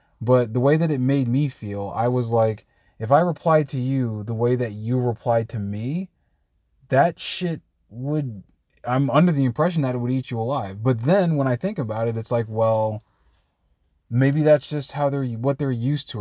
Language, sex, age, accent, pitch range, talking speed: English, male, 20-39, American, 110-140 Hz, 205 wpm